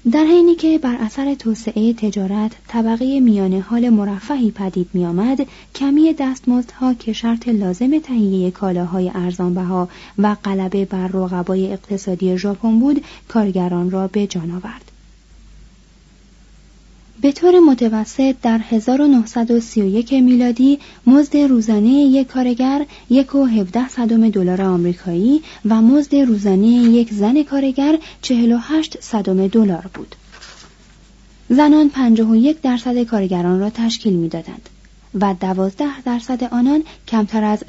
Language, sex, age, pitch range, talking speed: Persian, female, 30-49, 190-255 Hz, 110 wpm